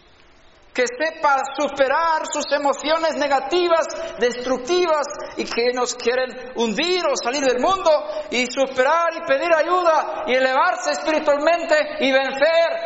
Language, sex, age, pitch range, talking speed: Spanish, male, 60-79, 240-320 Hz, 120 wpm